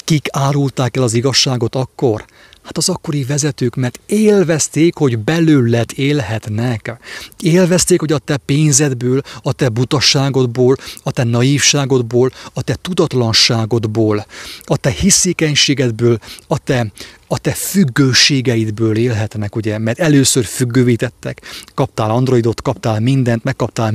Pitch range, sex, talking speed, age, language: 115-145 Hz, male, 120 wpm, 30-49, English